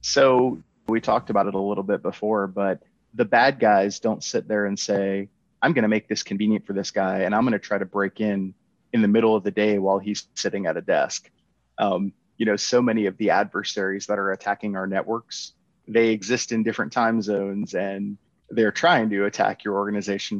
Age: 30-49